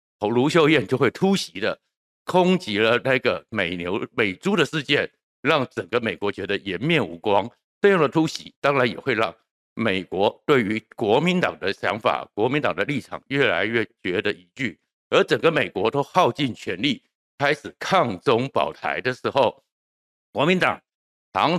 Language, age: Chinese, 60-79